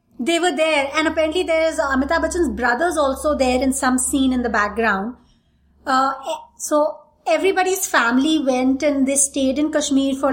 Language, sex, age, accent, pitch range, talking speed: English, female, 20-39, Indian, 240-305 Hz, 165 wpm